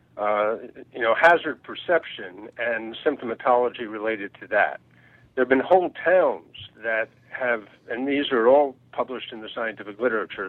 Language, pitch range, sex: English, 115-140 Hz, male